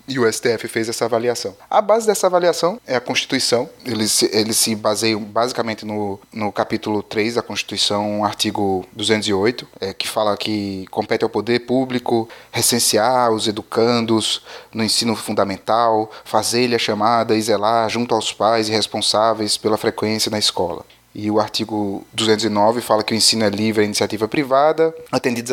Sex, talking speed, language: male, 155 wpm, Portuguese